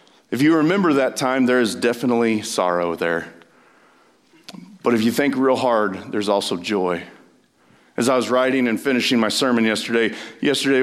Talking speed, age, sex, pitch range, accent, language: 160 wpm, 40-59, male, 100-120 Hz, American, English